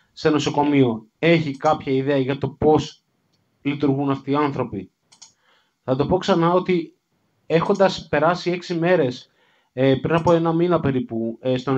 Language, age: Greek, 30-49